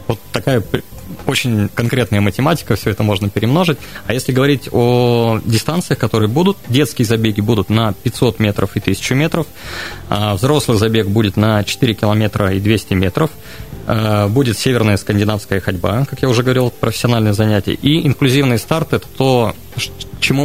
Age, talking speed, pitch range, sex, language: 20-39, 155 wpm, 105-120 Hz, male, Russian